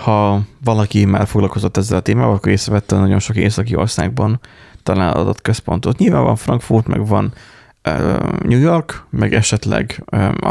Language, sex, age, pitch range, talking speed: Hungarian, male, 30-49, 100-120 Hz, 155 wpm